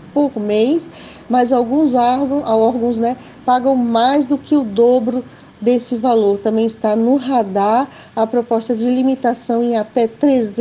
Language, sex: Portuguese, female